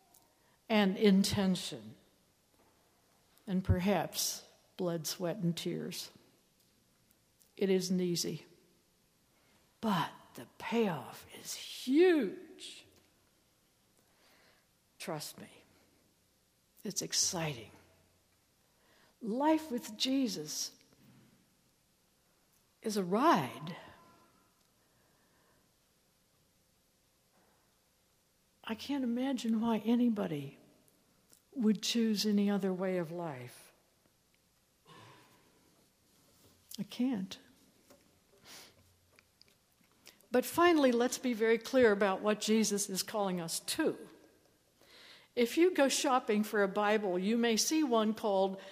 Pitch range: 180-245 Hz